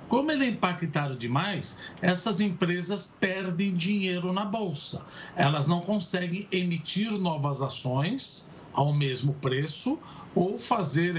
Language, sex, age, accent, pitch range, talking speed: Portuguese, male, 50-69, Brazilian, 150-200 Hz, 120 wpm